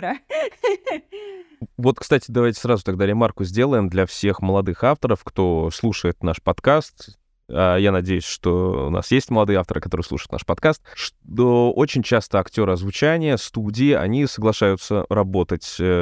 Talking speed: 140 wpm